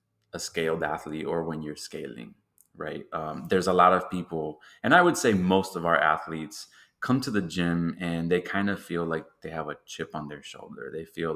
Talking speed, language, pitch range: 215 wpm, English, 80-90 Hz